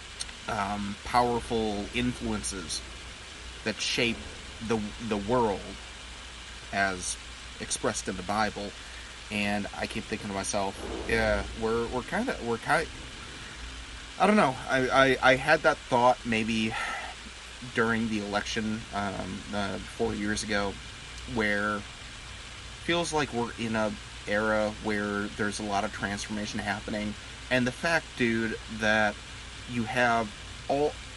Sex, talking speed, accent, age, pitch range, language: male, 130 wpm, American, 30-49, 95-125 Hz, English